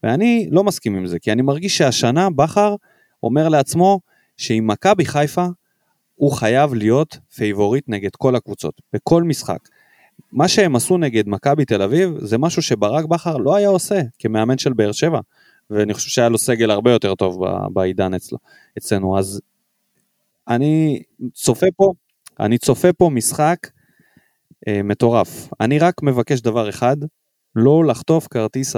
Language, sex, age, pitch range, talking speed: Hebrew, male, 30-49, 110-155 Hz, 150 wpm